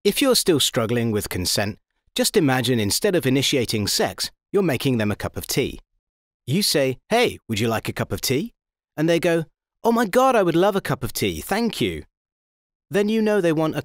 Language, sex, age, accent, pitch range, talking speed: Italian, male, 30-49, British, 110-165 Hz, 215 wpm